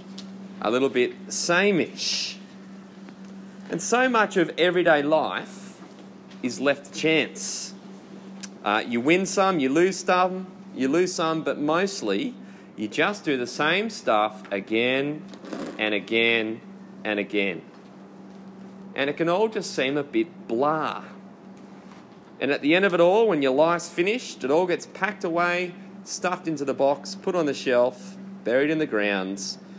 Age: 30-49